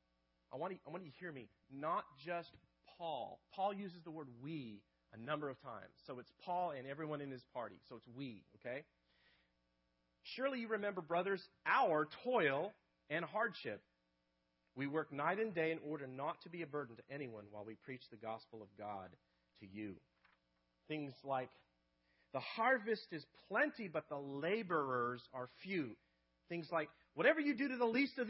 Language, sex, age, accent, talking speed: English, male, 40-59, American, 170 wpm